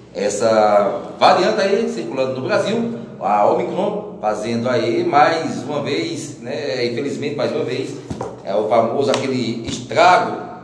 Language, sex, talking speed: Portuguese, male, 130 wpm